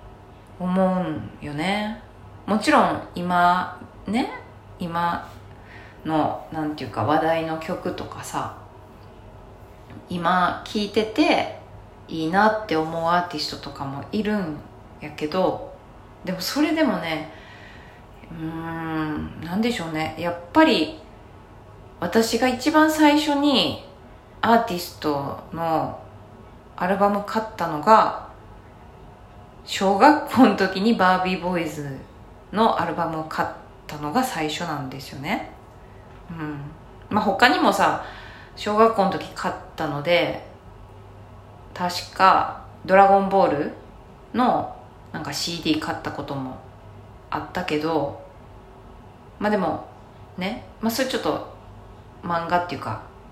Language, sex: Japanese, female